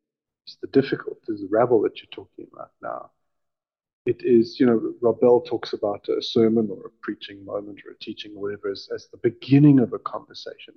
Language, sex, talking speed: English, male, 200 wpm